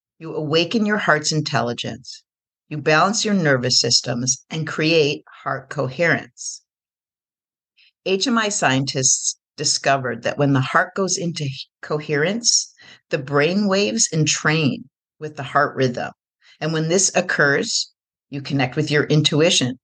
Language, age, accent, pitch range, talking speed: English, 50-69, American, 140-180 Hz, 125 wpm